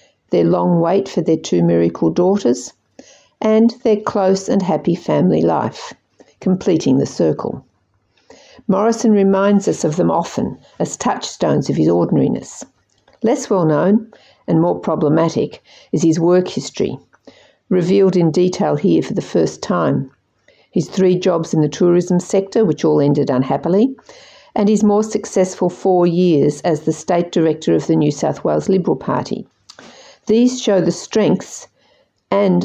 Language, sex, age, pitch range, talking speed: English, female, 50-69, 165-205 Hz, 145 wpm